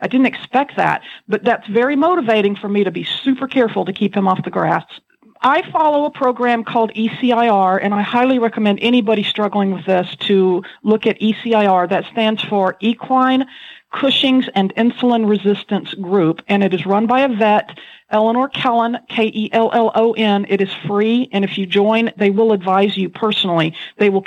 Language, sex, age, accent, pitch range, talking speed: English, female, 40-59, American, 195-245 Hz, 175 wpm